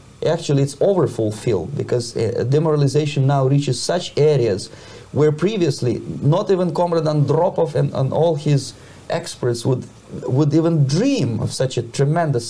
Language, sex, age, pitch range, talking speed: Finnish, male, 30-49, 120-155 Hz, 140 wpm